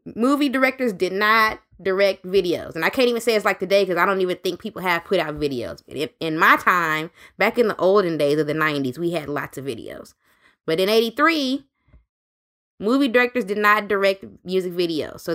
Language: English